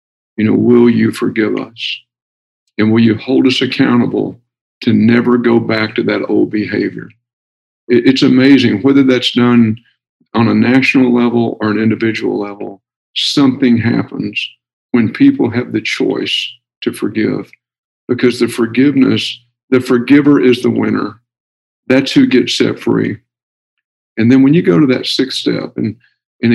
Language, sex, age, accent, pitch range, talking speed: English, male, 50-69, American, 110-125 Hz, 150 wpm